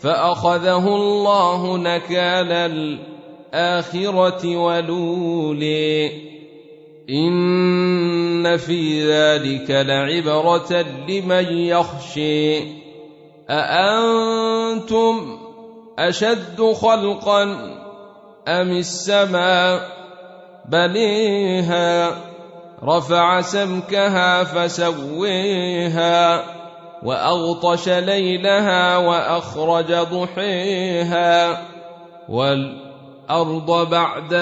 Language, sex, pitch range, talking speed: Arabic, male, 170-185 Hz, 45 wpm